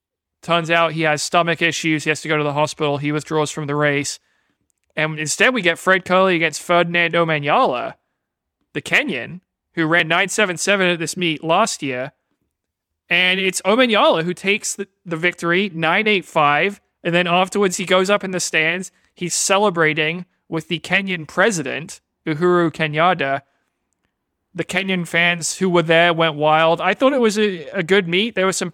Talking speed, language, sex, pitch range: 170 wpm, English, male, 155-190 Hz